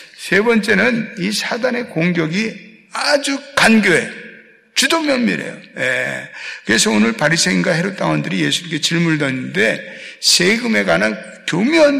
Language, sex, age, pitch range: Korean, male, 60-79, 155-225 Hz